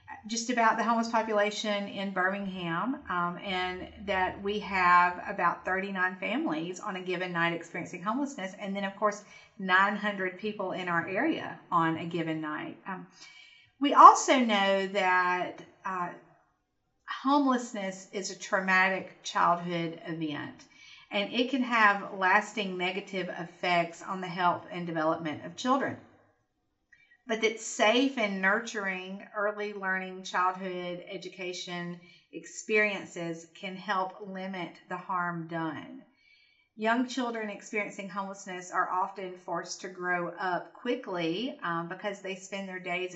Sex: female